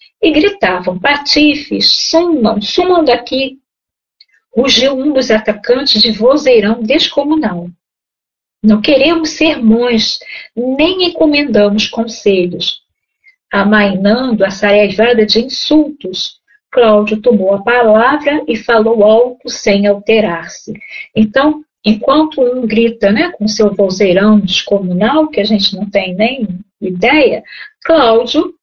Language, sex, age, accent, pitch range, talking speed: Portuguese, female, 50-69, Brazilian, 210-300 Hz, 105 wpm